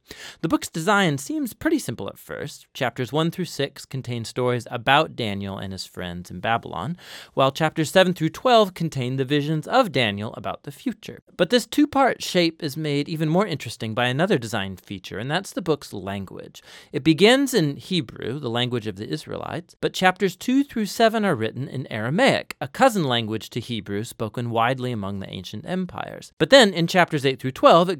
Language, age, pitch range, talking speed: English, 30-49, 115-175 Hz, 190 wpm